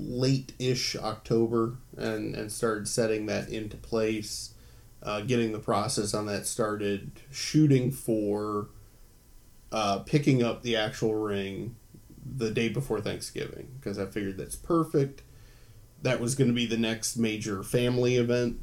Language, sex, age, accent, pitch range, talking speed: English, male, 20-39, American, 110-130 Hz, 140 wpm